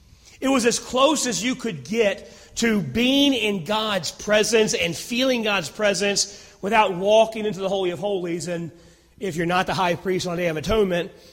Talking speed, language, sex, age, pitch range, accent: 190 wpm, English, male, 40-59, 175-210 Hz, American